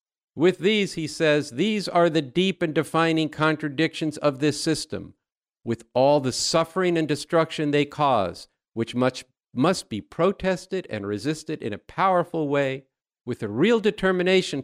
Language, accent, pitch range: English, American, 120-170 Hz